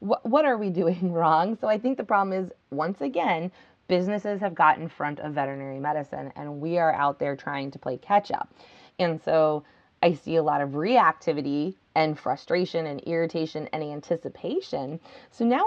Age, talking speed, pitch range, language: 20-39, 180 wpm, 155-190 Hz, English